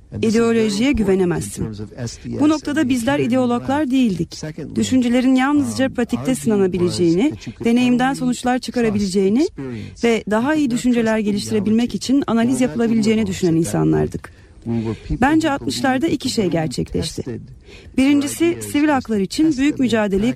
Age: 40-59